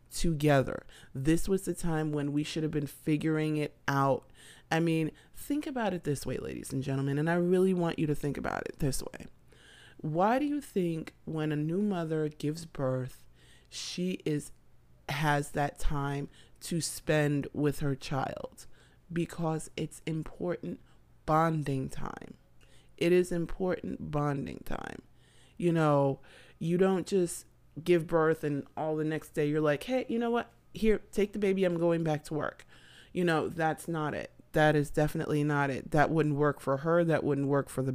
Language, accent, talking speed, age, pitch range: English, American, 175 wpm, 30-49, 140-165 Hz